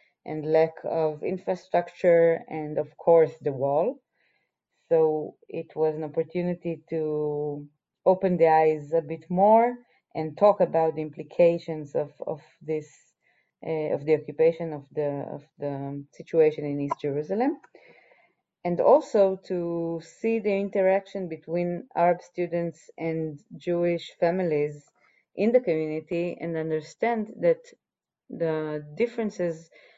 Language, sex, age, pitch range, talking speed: English, female, 30-49, 155-175 Hz, 120 wpm